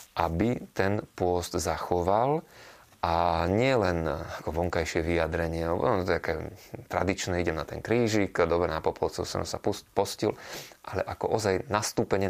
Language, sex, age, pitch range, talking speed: Slovak, male, 30-49, 85-115 Hz, 125 wpm